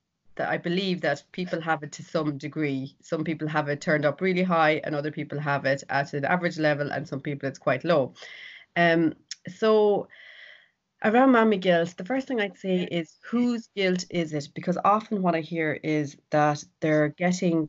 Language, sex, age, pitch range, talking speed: English, female, 30-49, 150-175 Hz, 195 wpm